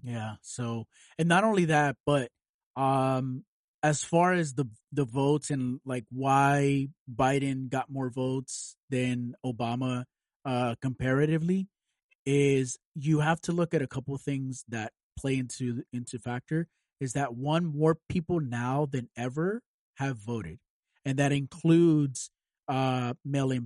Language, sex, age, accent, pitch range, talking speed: English, male, 30-49, American, 125-150 Hz, 140 wpm